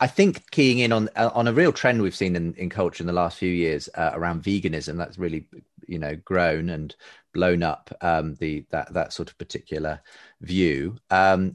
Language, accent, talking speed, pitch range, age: English, British, 205 wpm, 85-115 Hz, 30-49